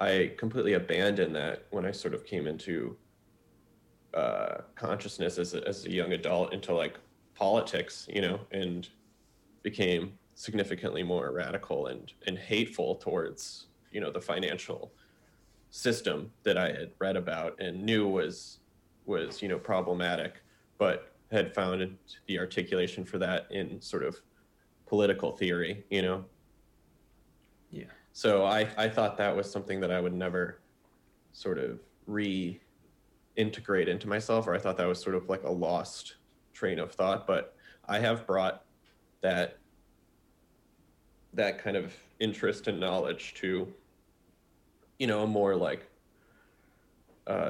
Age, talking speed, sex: 20-39, 140 wpm, male